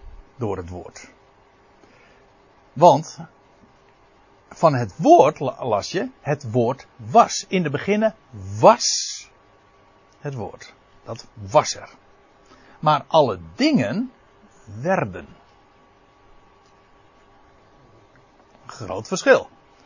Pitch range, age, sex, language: 115-155 Hz, 60-79, male, Dutch